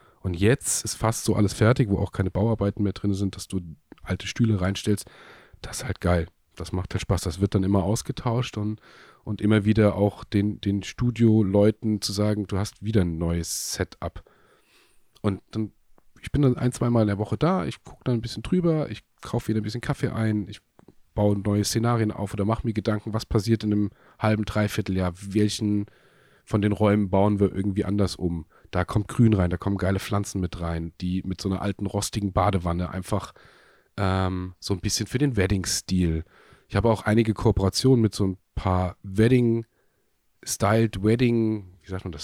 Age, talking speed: 30-49, 195 wpm